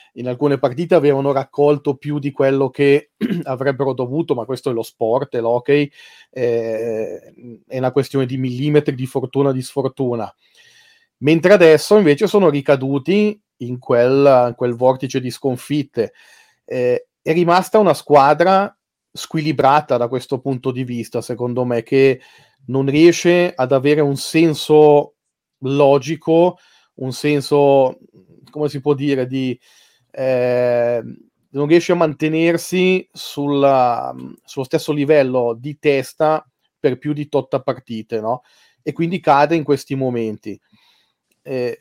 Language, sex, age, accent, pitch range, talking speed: Italian, male, 30-49, native, 130-155 Hz, 130 wpm